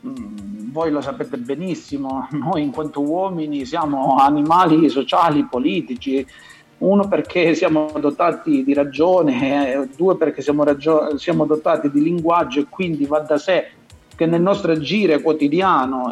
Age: 50-69